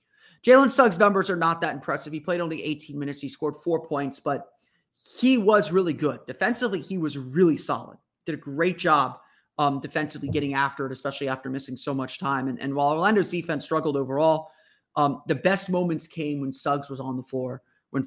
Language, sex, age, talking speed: English, male, 30-49, 200 wpm